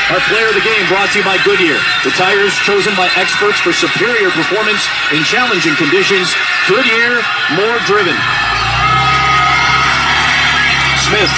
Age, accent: 40-59, American